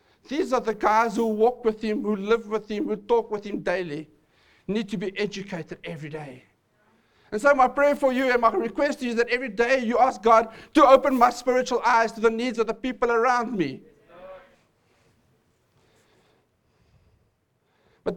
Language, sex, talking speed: English, male, 175 wpm